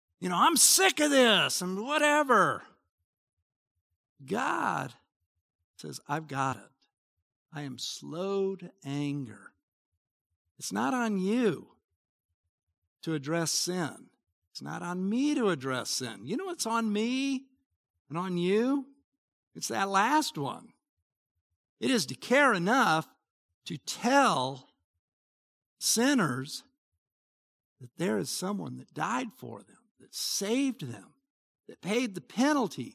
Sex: male